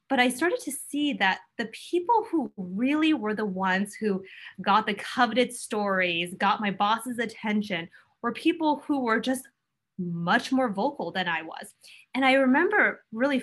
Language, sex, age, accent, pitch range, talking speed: English, female, 20-39, American, 190-245 Hz, 165 wpm